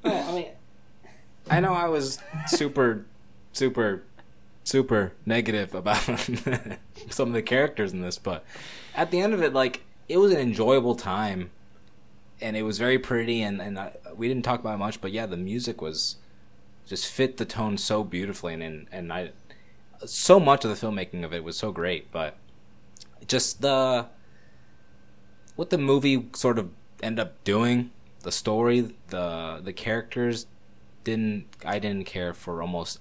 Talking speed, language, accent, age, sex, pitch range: 160 wpm, English, American, 20-39, male, 90-120 Hz